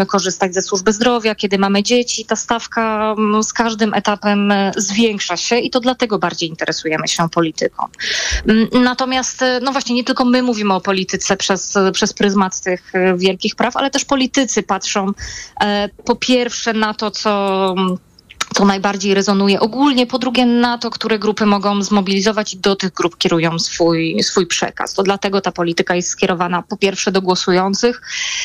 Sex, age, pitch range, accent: female, 20-39, 180-230 Hz, native